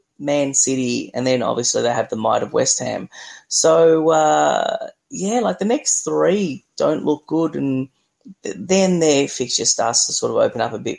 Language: English